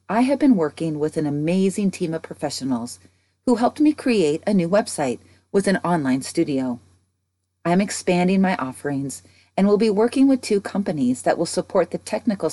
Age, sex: 40-59, female